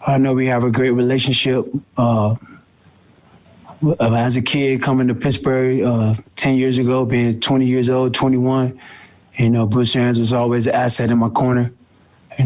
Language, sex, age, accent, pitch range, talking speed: English, male, 20-39, American, 115-125 Hz, 170 wpm